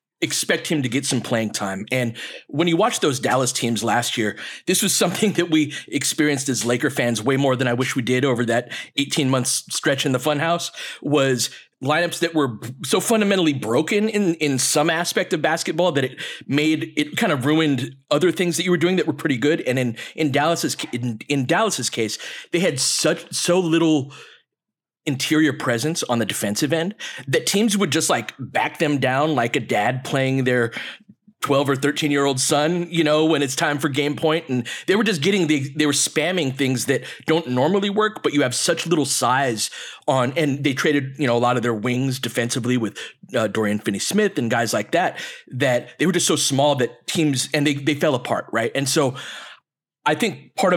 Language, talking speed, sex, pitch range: English, 210 wpm, male, 130-165 Hz